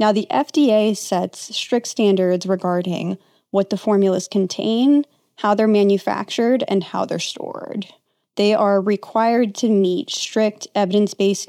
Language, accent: English, American